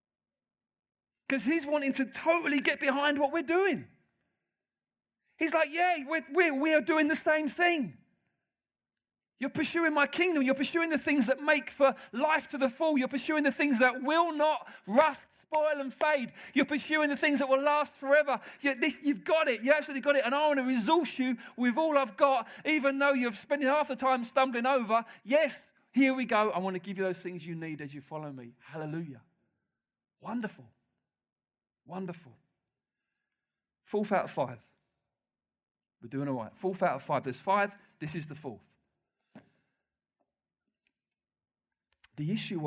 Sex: male